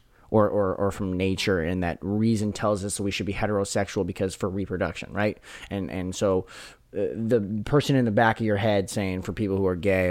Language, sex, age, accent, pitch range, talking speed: English, male, 30-49, American, 95-110 Hz, 210 wpm